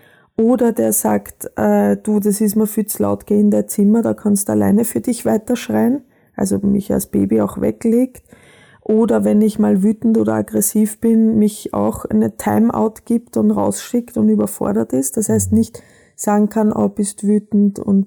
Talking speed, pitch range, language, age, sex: 185 wpm, 190-225 Hz, German, 20-39, female